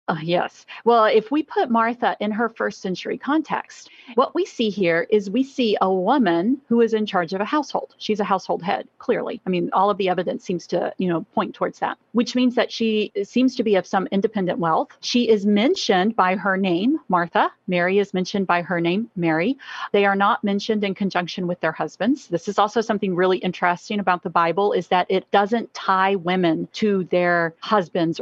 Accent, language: American, English